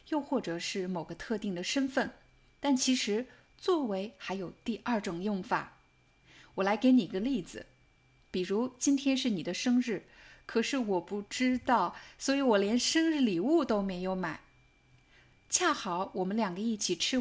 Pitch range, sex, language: 190-260 Hz, female, Chinese